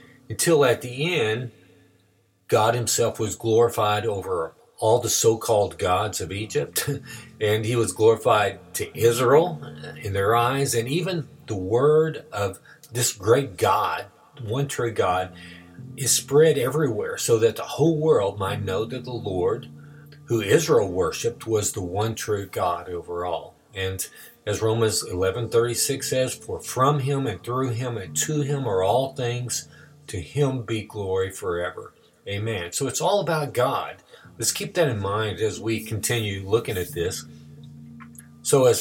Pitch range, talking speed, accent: 100-140 Hz, 155 wpm, American